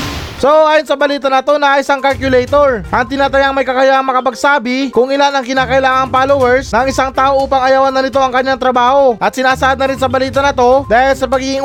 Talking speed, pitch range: 205 wpm, 250-275 Hz